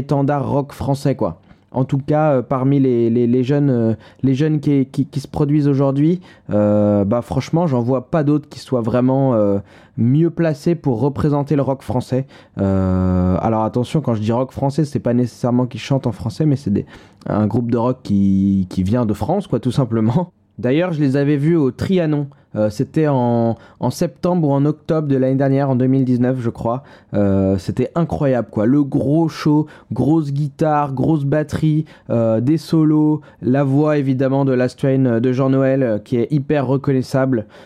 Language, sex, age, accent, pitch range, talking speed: French, male, 20-39, French, 115-145 Hz, 190 wpm